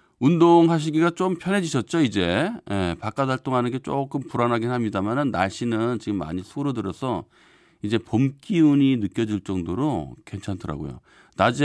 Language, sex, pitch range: Korean, male, 100-150 Hz